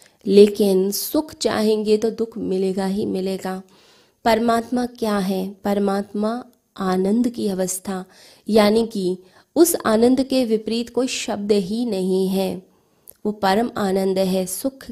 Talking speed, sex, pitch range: 125 wpm, female, 195-235 Hz